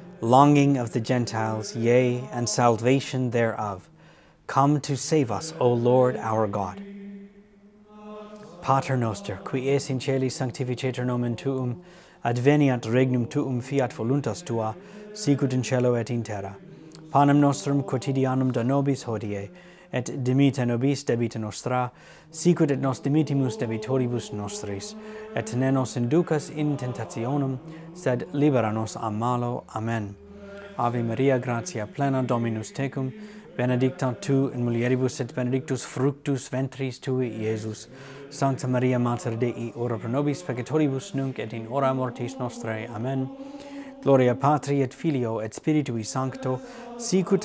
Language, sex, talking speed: English, male, 130 wpm